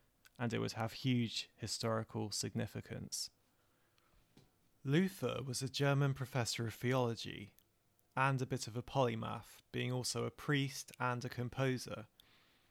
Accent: British